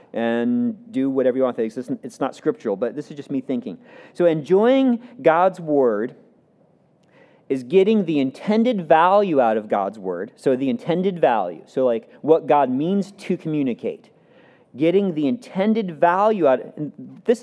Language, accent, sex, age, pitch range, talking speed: English, American, male, 40-59, 140-210 Hz, 150 wpm